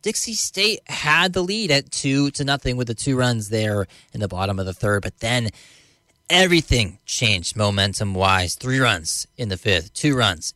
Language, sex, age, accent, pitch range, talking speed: English, male, 20-39, American, 105-140 Hz, 190 wpm